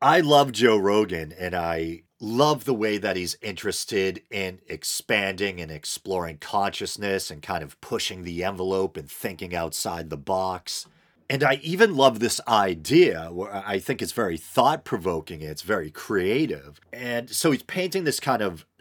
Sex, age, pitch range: male, 40-59, 85-110 Hz